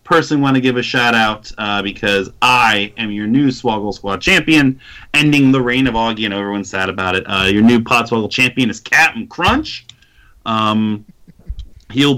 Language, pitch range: English, 110-145 Hz